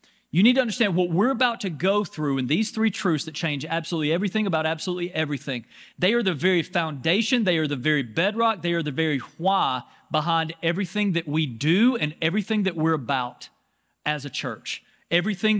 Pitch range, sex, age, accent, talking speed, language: 155-210 Hz, male, 40-59, American, 190 wpm, English